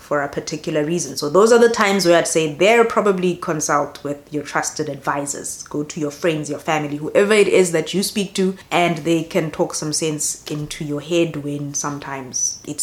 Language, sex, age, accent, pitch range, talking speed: English, female, 30-49, South African, 155-205 Hz, 205 wpm